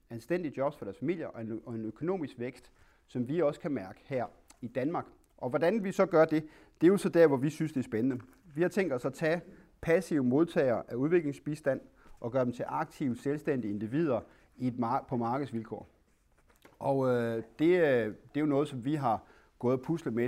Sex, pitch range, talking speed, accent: male, 120-165 Hz, 215 wpm, native